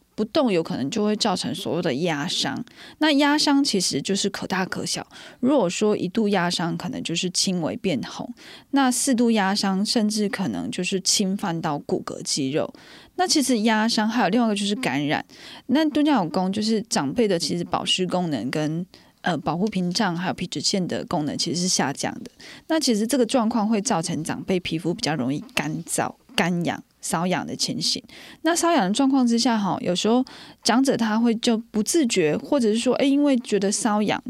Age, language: 20-39, Chinese